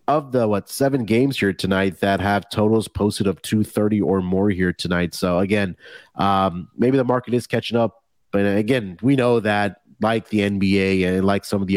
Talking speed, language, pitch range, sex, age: 200 wpm, English, 95-135 Hz, male, 30-49